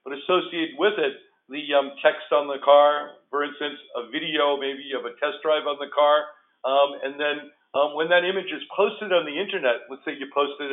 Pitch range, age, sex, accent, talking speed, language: 135-170 Hz, 50-69, male, American, 215 wpm, English